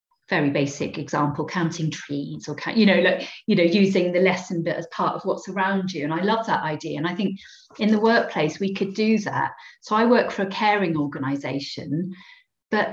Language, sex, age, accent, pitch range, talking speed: English, female, 40-59, British, 155-195 Hz, 205 wpm